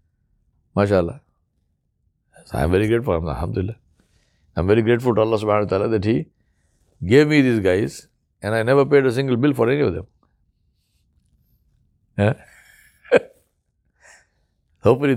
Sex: male